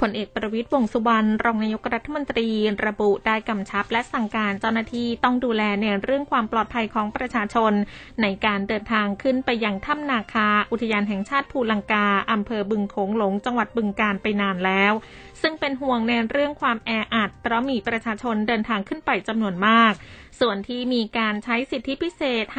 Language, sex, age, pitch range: Thai, female, 20-39, 210-245 Hz